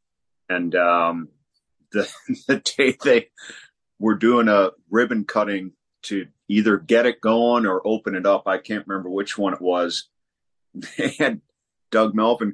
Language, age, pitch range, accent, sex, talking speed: English, 50-69, 95-110 Hz, American, male, 150 wpm